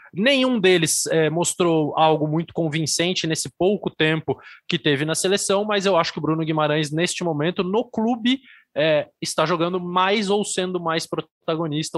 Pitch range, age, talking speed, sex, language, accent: 150-185 Hz, 20-39, 165 wpm, male, Portuguese, Brazilian